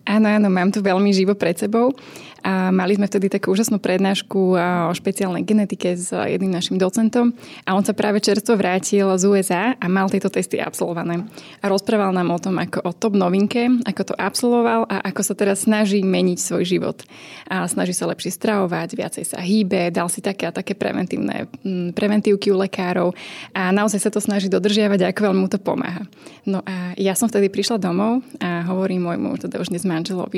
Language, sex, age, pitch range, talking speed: Czech, female, 20-39, 185-210 Hz, 185 wpm